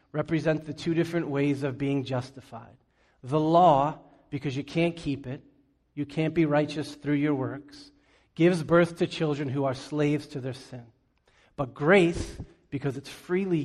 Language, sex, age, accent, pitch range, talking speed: English, male, 40-59, American, 130-155 Hz, 165 wpm